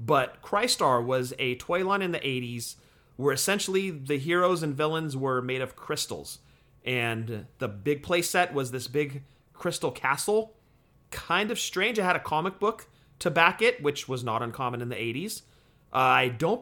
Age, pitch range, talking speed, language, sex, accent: 30-49, 130-170 Hz, 180 wpm, English, male, American